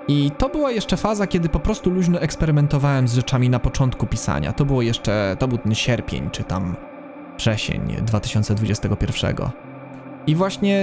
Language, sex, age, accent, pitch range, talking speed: Polish, male, 20-39, native, 130-170 Hz, 155 wpm